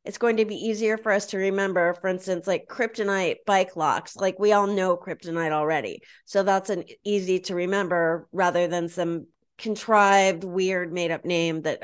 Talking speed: 180 wpm